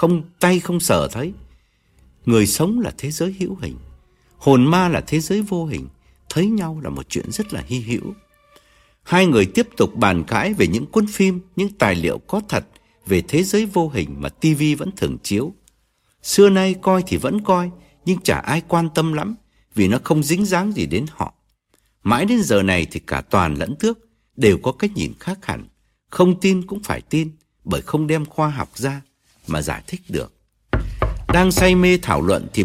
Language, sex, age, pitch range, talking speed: Vietnamese, male, 60-79, 115-190 Hz, 200 wpm